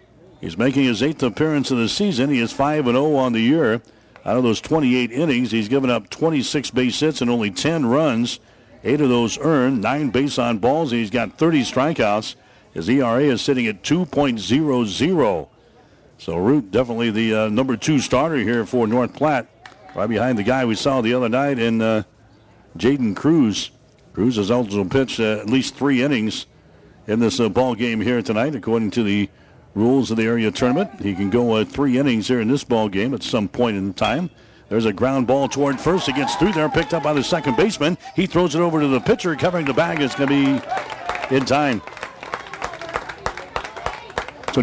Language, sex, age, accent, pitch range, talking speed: English, male, 60-79, American, 115-145 Hz, 195 wpm